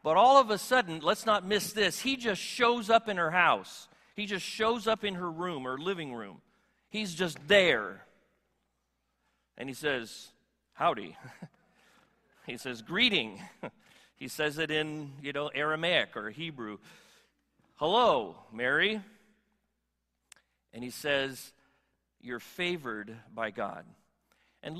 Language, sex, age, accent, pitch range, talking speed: English, male, 40-59, American, 145-210 Hz, 135 wpm